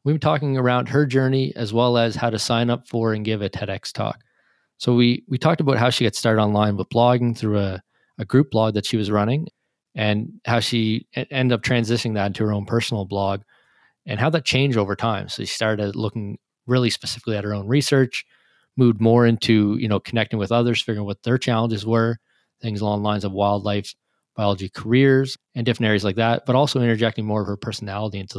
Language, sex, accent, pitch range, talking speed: English, male, American, 105-120 Hz, 220 wpm